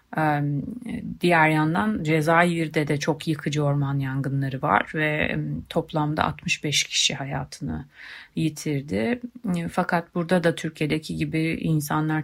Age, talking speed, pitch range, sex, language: 30-49, 105 wpm, 145-170 Hz, female, Turkish